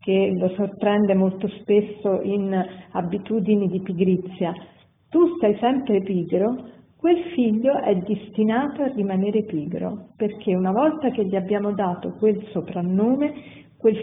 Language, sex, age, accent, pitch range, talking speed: Italian, female, 40-59, native, 190-230 Hz, 130 wpm